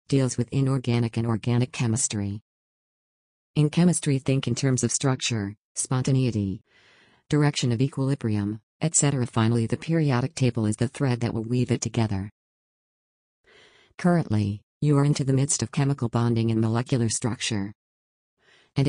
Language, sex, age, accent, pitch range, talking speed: English, female, 50-69, American, 115-135 Hz, 135 wpm